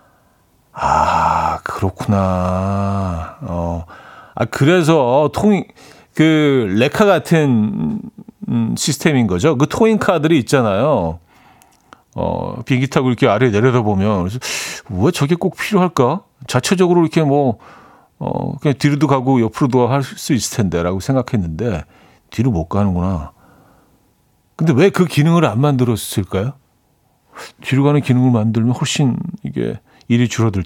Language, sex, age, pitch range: Korean, male, 40-59, 100-155 Hz